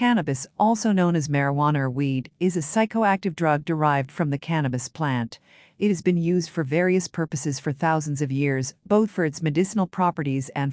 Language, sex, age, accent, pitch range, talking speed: English, female, 50-69, American, 145-180 Hz, 185 wpm